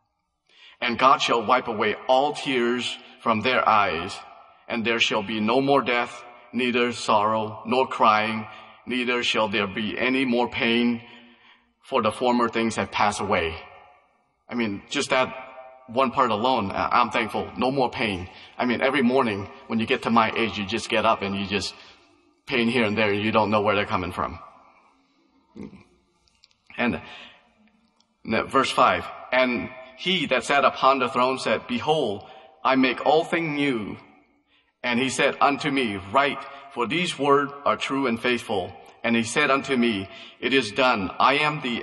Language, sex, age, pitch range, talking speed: English, male, 30-49, 110-135 Hz, 170 wpm